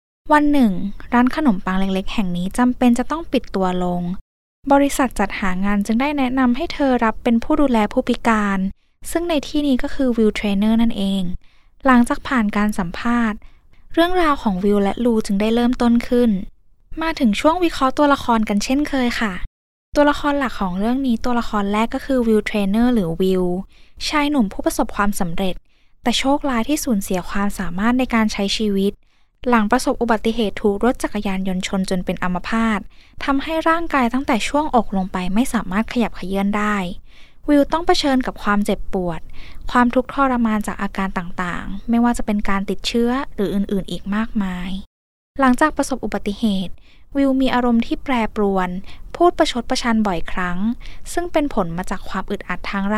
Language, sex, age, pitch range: Thai, female, 10-29, 195-260 Hz